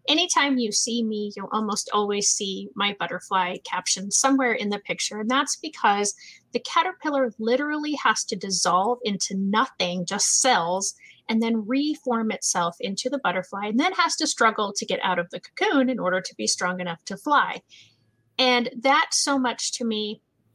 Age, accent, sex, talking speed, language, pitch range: 30-49, American, female, 175 wpm, English, 205-270 Hz